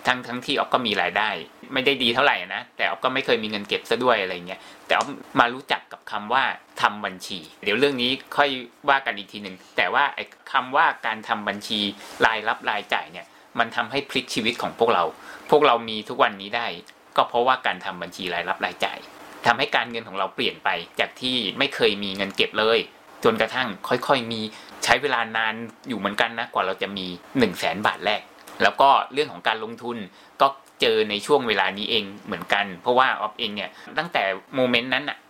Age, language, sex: 20-39, Thai, male